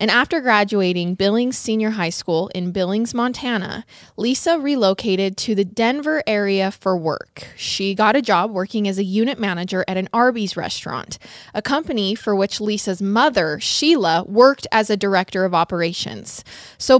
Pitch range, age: 190-245 Hz, 20-39